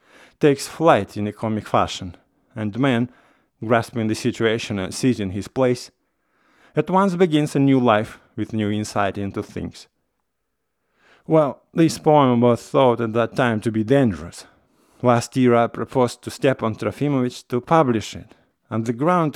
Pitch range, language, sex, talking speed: 110-140 Hz, English, male, 155 wpm